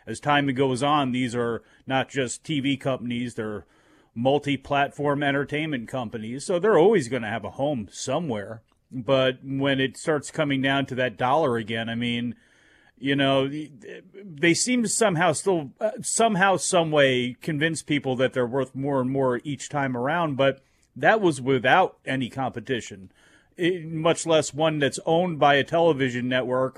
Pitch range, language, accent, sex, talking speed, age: 125-150 Hz, English, American, male, 160 wpm, 40-59